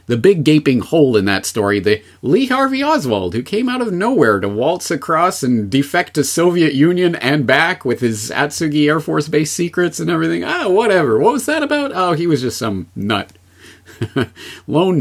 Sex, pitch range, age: male, 105-155 Hz, 30-49